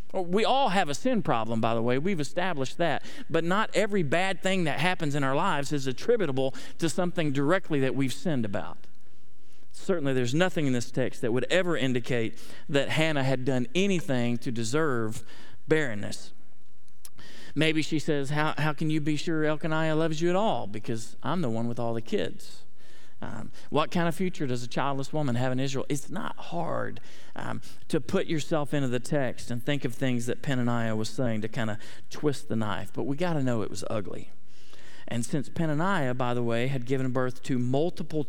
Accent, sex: American, male